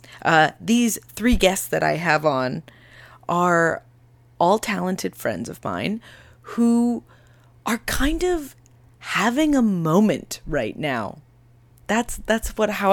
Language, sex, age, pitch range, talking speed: English, female, 30-49, 135-195 Hz, 125 wpm